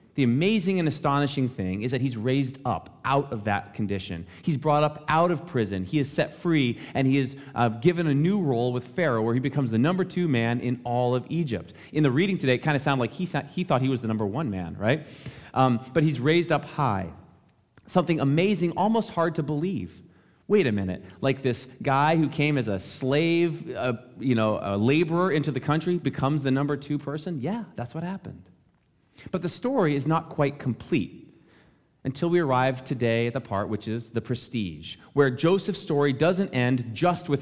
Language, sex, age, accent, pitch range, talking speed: English, male, 30-49, American, 115-155 Hz, 205 wpm